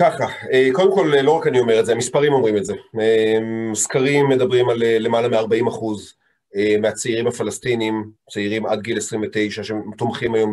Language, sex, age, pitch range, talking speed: Hebrew, male, 30-49, 115-160 Hz, 155 wpm